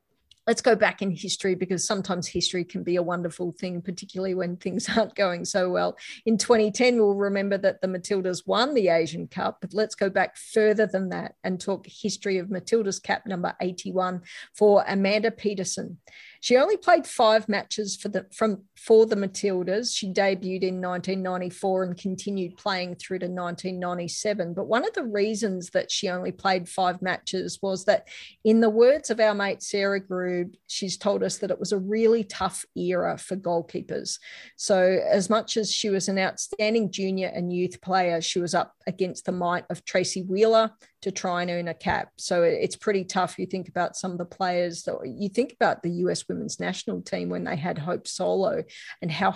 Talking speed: 190 wpm